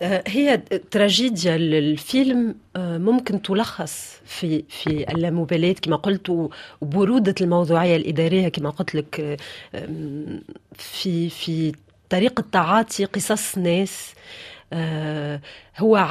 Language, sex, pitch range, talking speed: Arabic, female, 165-215 Hz, 85 wpm